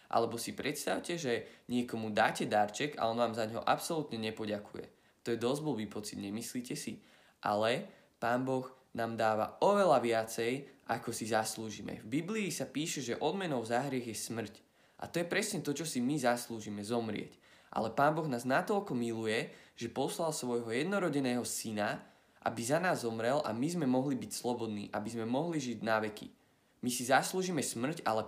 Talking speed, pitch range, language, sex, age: 175 wpm, 110-130 Hz, Slovak, male, 20-39